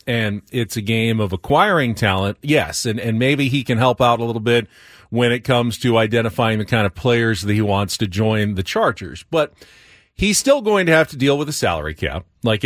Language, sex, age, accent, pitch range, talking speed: English, male, 40-59, American, 110-150 Hz, 225 wpm